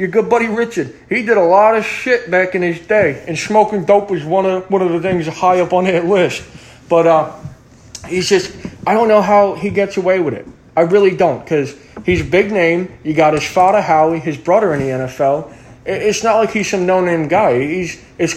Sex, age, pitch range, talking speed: male, 20-39, 150-190 Hz, 225 wpm